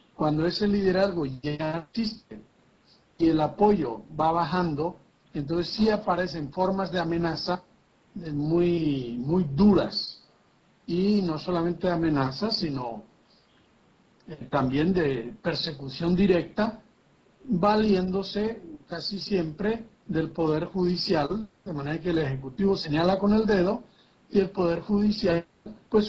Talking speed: 110 wpm